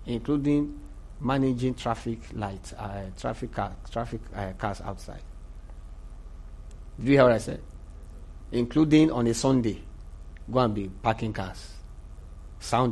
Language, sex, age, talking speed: English, male, 50-69, 125 wpm